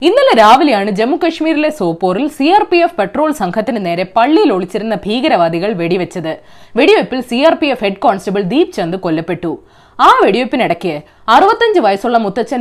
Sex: female